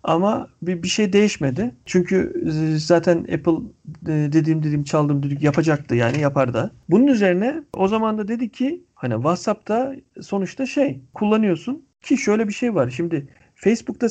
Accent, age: native, 40-59